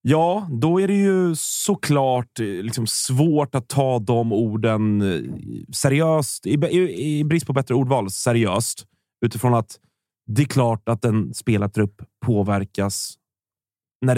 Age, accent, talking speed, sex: 30-49, native, 130 wpm, male